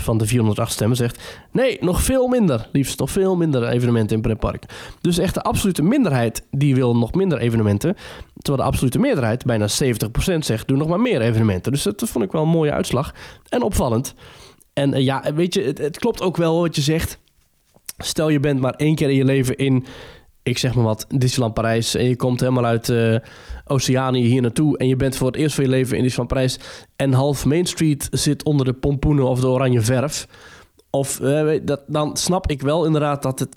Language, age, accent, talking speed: Dutch, 20-39, Dutch, 215 wpm